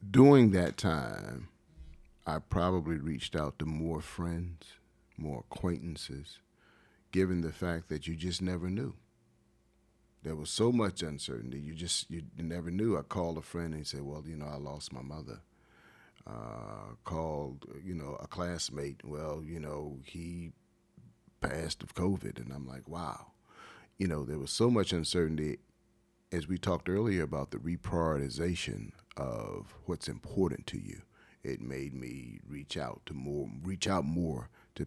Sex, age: male, 40-59